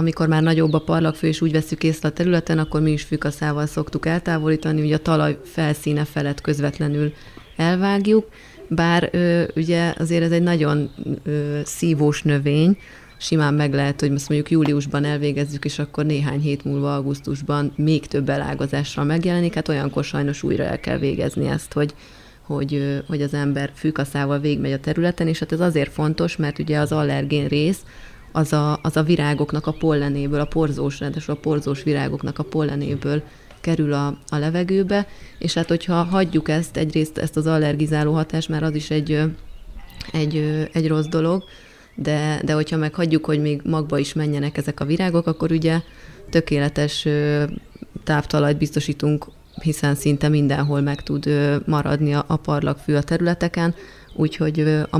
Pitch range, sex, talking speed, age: 145-160 Hz, female, 155 wpm, 30-49